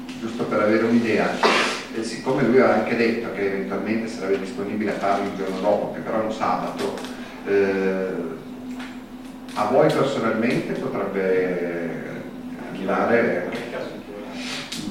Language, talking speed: Italian, 125 wpm